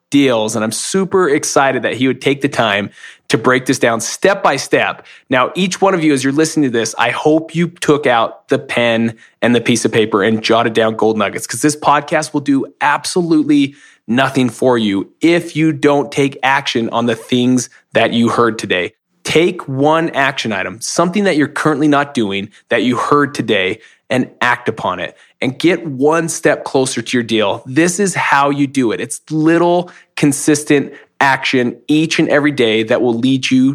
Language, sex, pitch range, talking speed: English, male, 120-155 Hz, 195 wpm